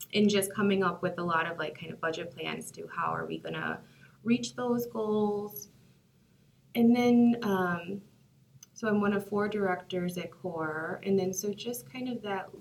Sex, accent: female, American